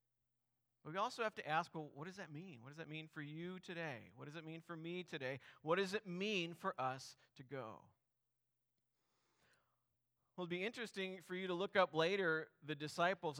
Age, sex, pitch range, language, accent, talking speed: 40-59, male, 145-190 Hz, English, American, 200 wpm